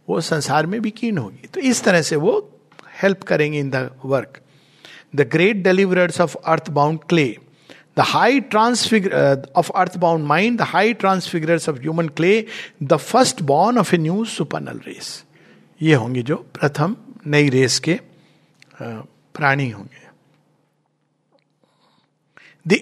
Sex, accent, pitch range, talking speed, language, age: male, native, 125-165 Hz, 140 wpm, Hindi, 60-79